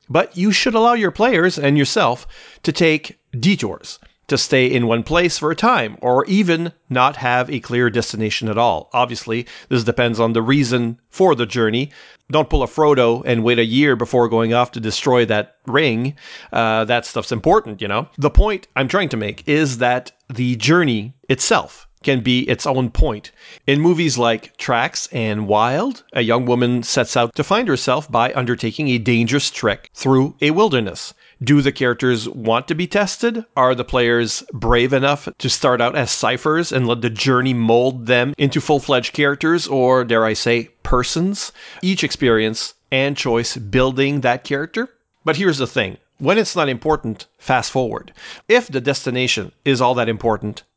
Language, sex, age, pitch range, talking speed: English, male, 40-59, 120-145 Hz, 180 wpm